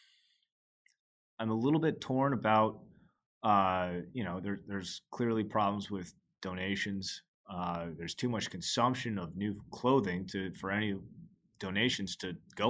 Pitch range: 90-110 Hz